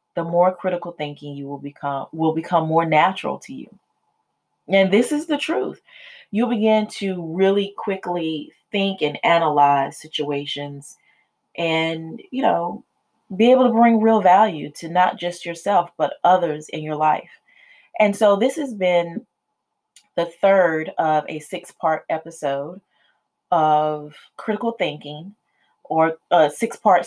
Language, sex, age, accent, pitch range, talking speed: English, female, 30-49, American, 150-195 Hz, 140 wpm